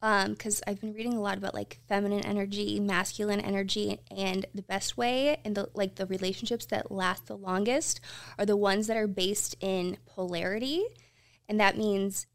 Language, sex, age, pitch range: English, female, 20-39, 185-210 Hz